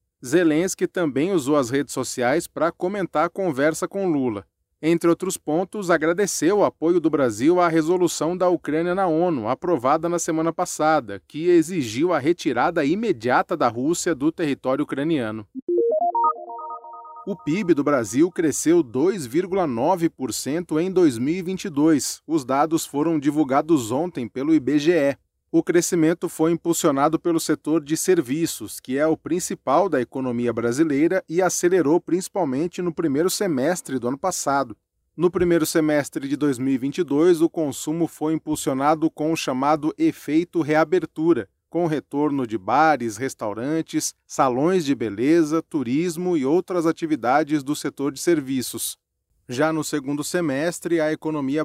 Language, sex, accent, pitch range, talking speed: English, male, Brazilian, 145-180 Hz, 130 wpm